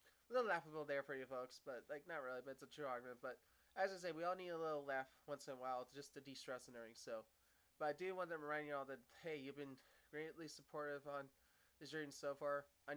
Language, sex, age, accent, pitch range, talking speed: English, male, 20-39, American, 135-160 Hz, 260 wpm